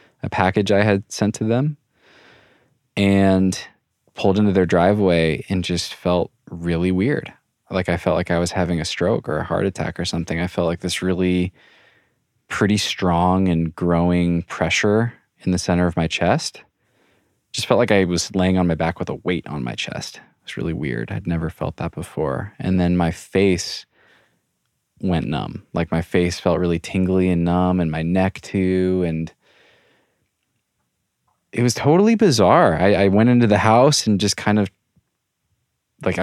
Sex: male